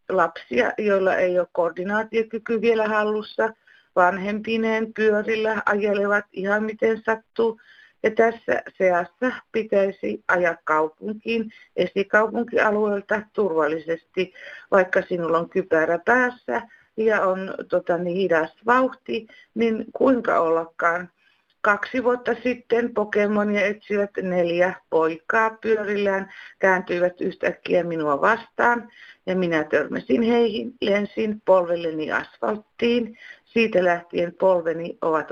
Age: 60-79